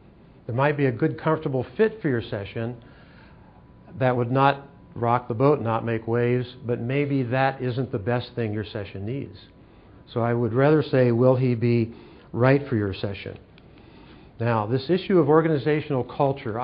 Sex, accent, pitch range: male, American, 115-135 Hz